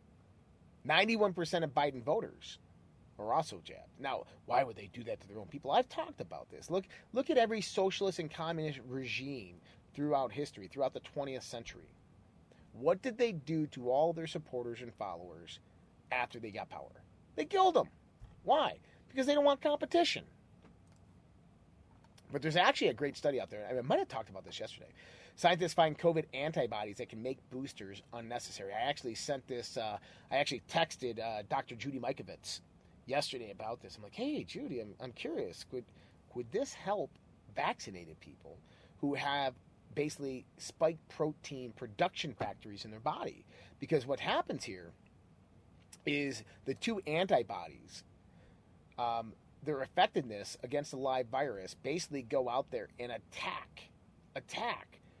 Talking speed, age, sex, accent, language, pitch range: 155 wpm, 30-49, male, American, English, 115-160 Hz